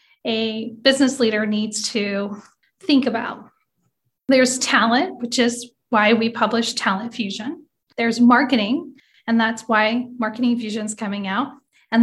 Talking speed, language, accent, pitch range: 135 wpm, English, American, 215-260 Hz